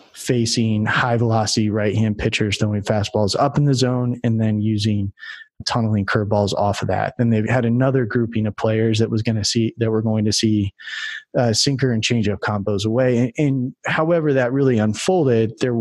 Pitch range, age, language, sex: 105-125 Hz, 30-49, English, male